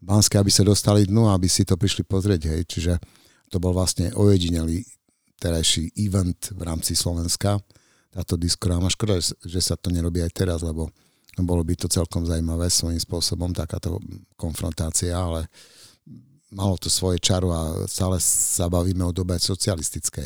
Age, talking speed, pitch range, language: 60-79, 155 wpm, 90-105 Hz, Slovak